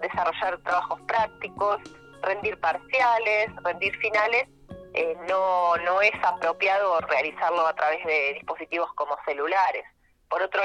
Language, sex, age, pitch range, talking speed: Spanish, female, 20-39, 165-225 Hz, 120 wpm